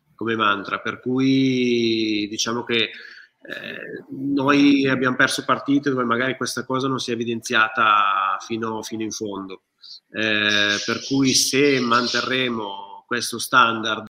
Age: 30-49